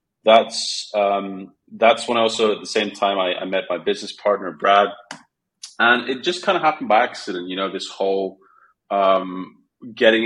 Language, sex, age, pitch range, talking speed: English, male, 30-49, 95-110 Hz, 180 wpm